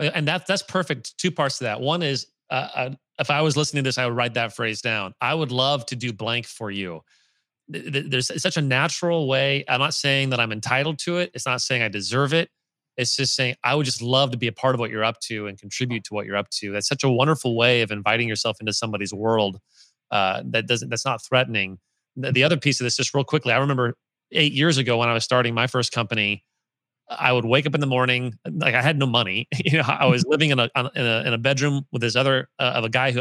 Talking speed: 260 wpm